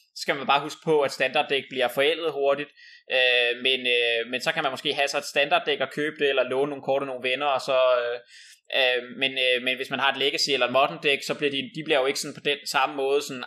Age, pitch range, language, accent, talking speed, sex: 20-39, 125-150 Hz, Danish, native, 265 wpm, male